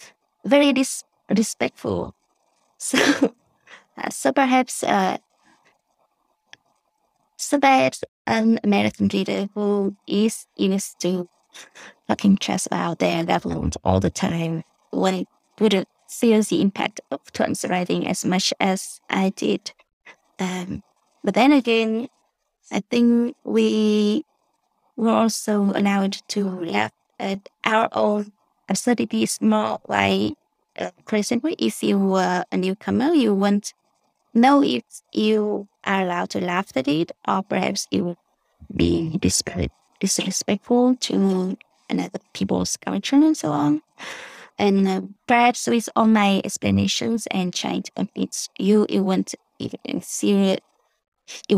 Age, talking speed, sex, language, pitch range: 20-39, 125 wpm, female, English, 175-225 Hz